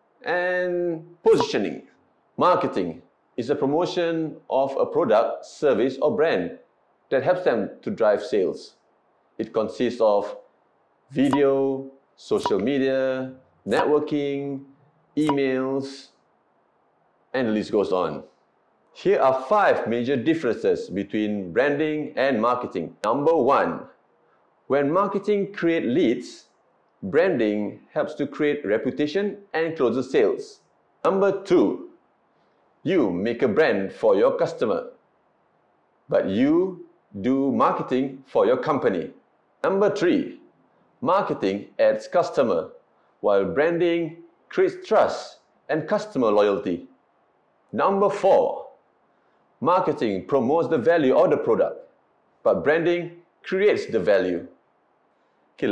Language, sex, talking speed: English, male, 105 wpm